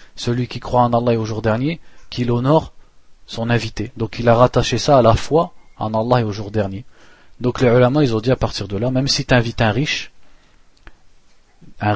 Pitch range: 105-125 Hz